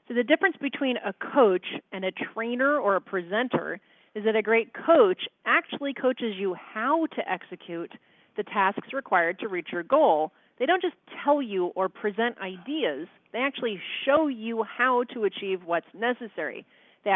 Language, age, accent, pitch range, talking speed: English, 40-59, American, 195-245 Hz, 170 wpm